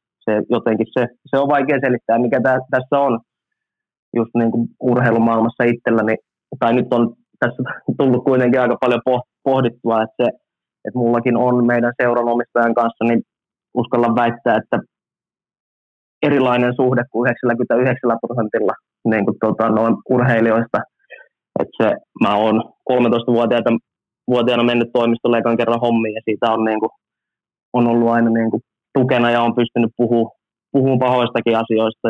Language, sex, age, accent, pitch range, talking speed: Finnish, male, 20-39, native, 115-125 Hz, 130 wpm